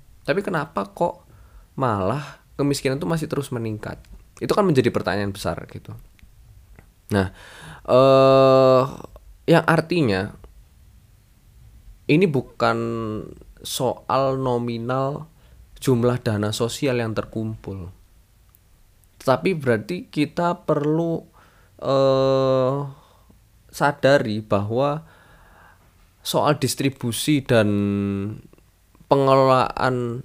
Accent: native